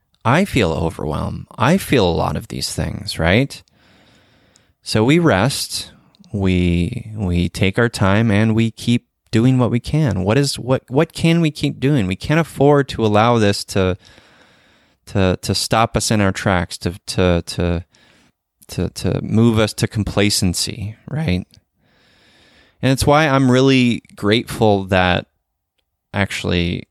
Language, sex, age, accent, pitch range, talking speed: English, male, 20-39, American, 95-130 Hz, 145 wpm